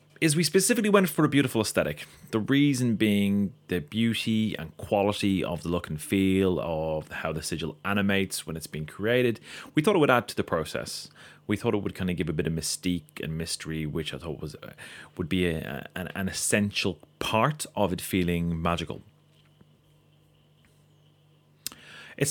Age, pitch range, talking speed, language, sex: 30-49, 80-110 Hz, 180 wpm, English, male